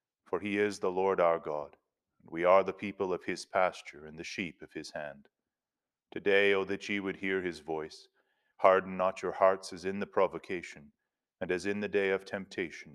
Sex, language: male, English